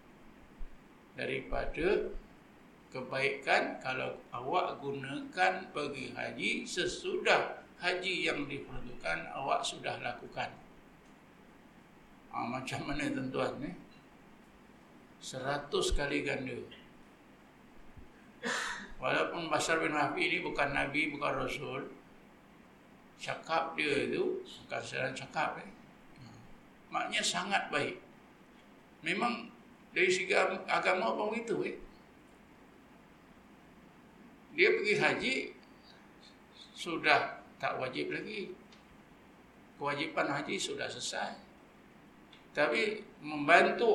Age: 60-79